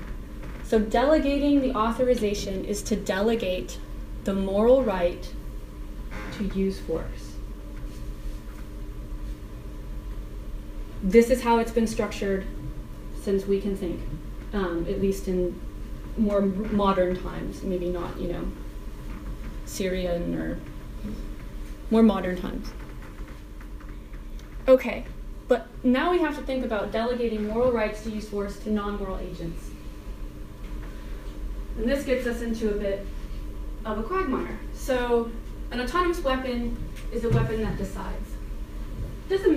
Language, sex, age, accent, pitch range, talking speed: English, female, 30-49, American, 190-255 Hz, 115 wpm